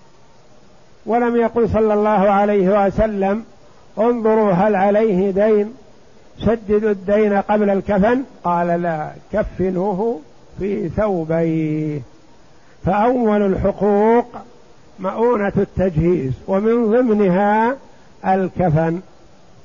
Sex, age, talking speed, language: male, 60-79, 80 wpm, Arabic